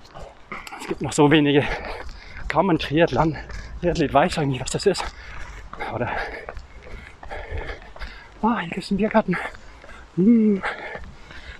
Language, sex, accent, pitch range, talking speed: German, male, German, 145-200 Hz, 120 wpm